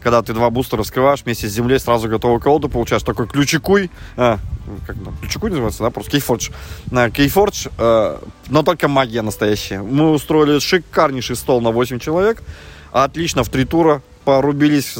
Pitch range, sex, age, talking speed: 110-145 Hz, male, 20-39, 155 wpm